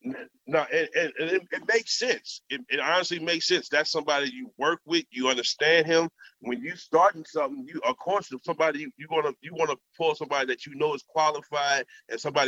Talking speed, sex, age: 210 wpm, male, 30-49